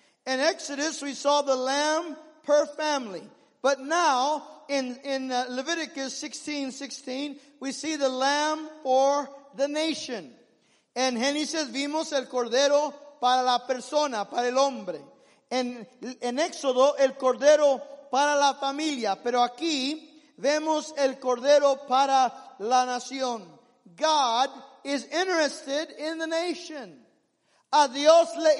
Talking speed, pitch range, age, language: 120 wpm, 260-295 Hz, 50-69, English